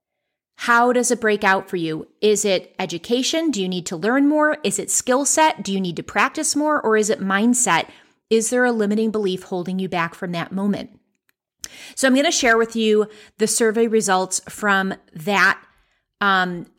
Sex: female